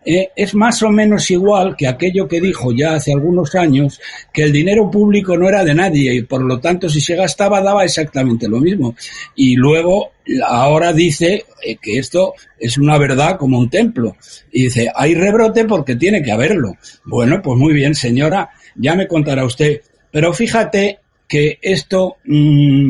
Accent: Spanish